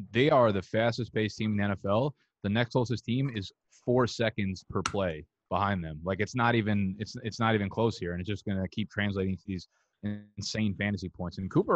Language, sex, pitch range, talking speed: English, male, 95-115 Hz, 225 wpm